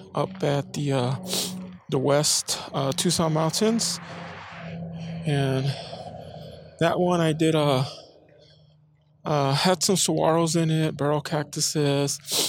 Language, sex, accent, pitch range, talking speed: English, male, American, 125-155 Hz, 110 wpm